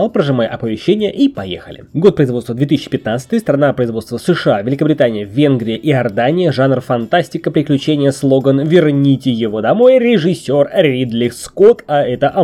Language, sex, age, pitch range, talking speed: Russian, male, 20-39, 130-195 Hz, 130 wpm